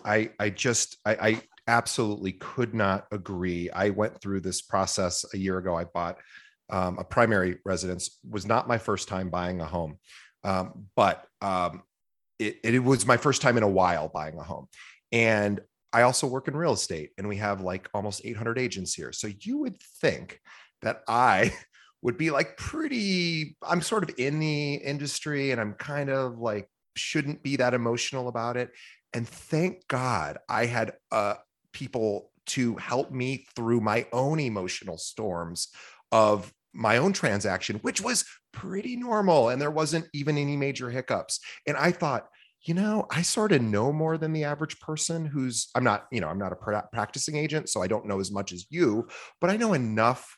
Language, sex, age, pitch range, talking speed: English, male, 30-49, 95-145 Hz, 185 wpm